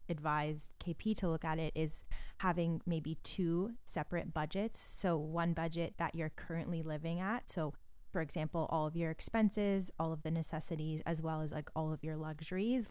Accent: American